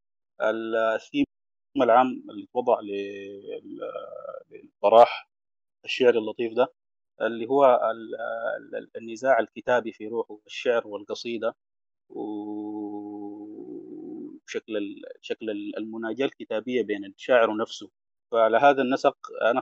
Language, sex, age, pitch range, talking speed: Arabic, male, 30-49, 110-150 Hz, 80 wpm